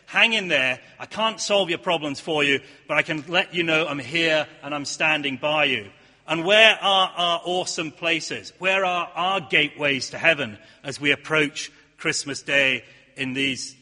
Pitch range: 150-180 Hz